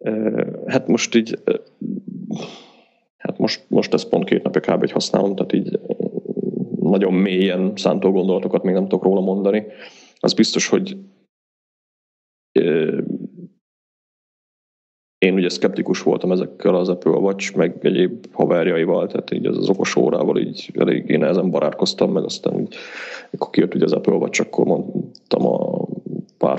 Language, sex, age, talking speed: Hungarian, male, 30-49, 130 wpm